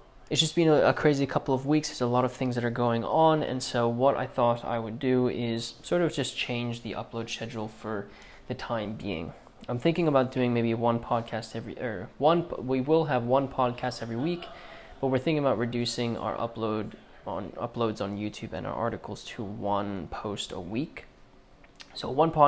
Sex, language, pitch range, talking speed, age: male, English, 115-135 Hz, 200 wpm, 20-39